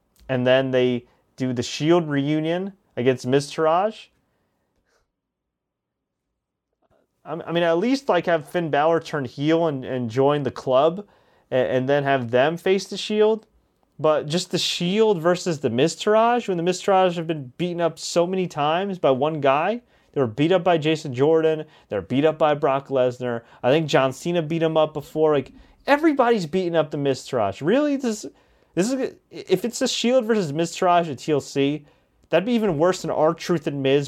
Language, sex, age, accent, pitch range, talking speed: English, male, 30-49, American, 130-175 Hz, 180 wpm